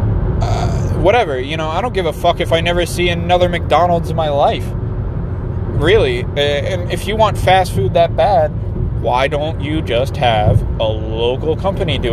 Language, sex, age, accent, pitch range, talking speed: English, male, 20-39, American, 115-140 Hz, 175 wpm